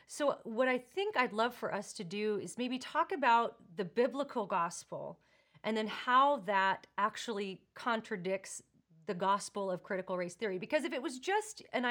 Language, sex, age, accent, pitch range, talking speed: English, female, 30-49, American, 190-230 Hz, 175 wpm